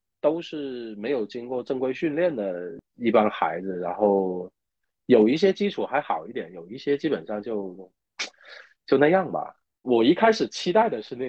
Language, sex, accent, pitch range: Chinese, male, native, 110-160 Hz